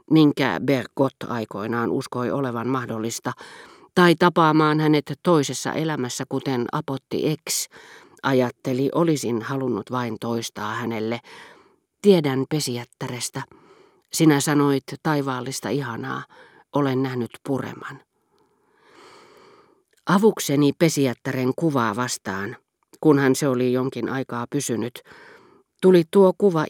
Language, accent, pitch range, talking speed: Finnish, native, 130-170 Hz, 95 wpm